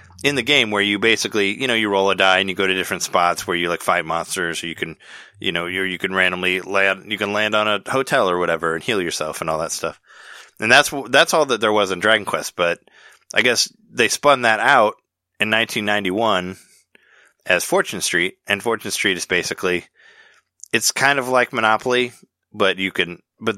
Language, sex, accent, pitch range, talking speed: English, male, American, 95-125 Hz, 215 wpm